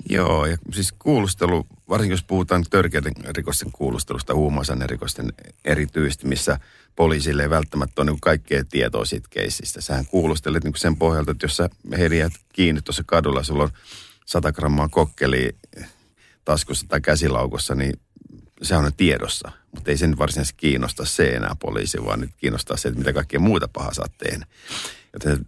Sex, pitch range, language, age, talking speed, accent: male, 70-85 Hz, Finnish, 50-69, 160 wpm, native